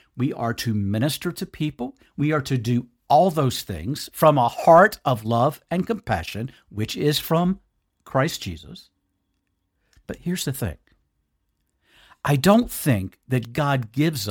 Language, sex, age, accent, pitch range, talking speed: English, male, 60-79, American, 100-155 Hz, 145 wpm